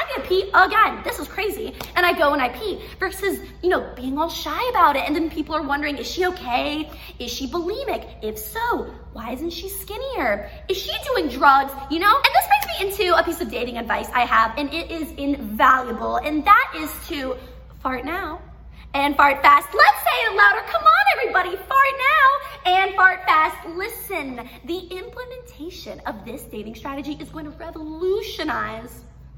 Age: 20-39